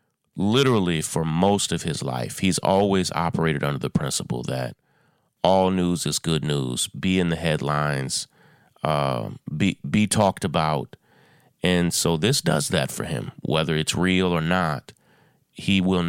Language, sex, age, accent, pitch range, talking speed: English, male, 30-49, American, 80-95 Hz, 155 wpm